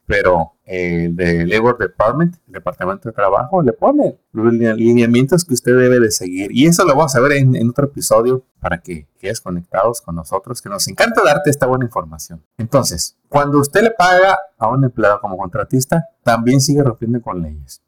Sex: male